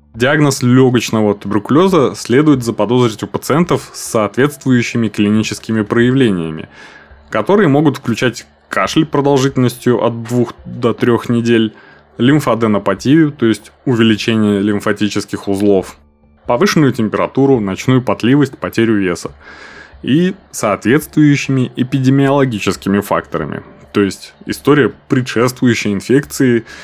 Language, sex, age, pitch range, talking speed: Russian, male, 20-39, 100-130 Hz, 95 wpm